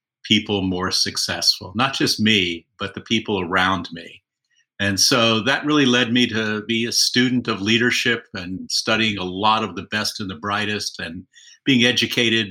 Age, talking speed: 50-69, 175 wpm